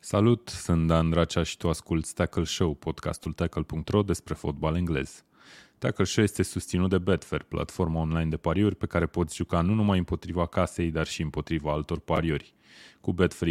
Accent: native